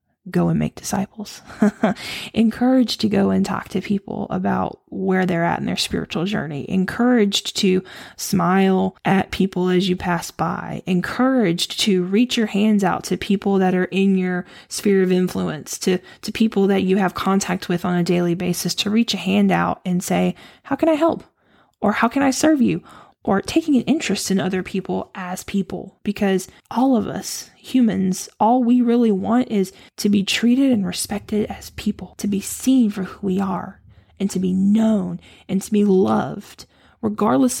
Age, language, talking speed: 10-29, English, 180 wpm